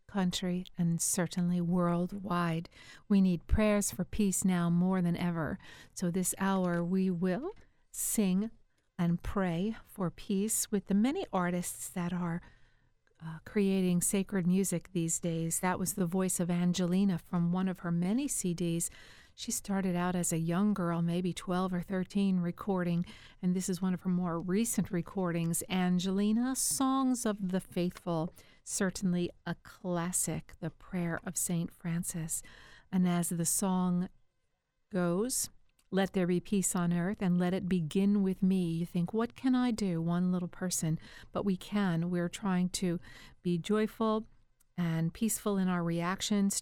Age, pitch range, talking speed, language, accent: 50-69, 175-195 Hz, 155 wpm, English, American